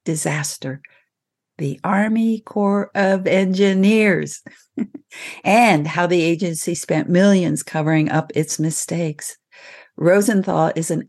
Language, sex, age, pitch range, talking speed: English, female, 50-69, 155-195 Hz, 105 wpm